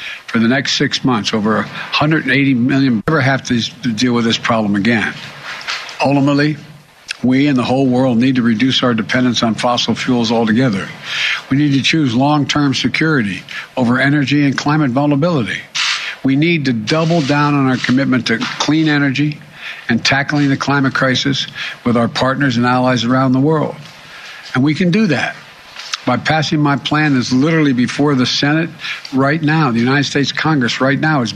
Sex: male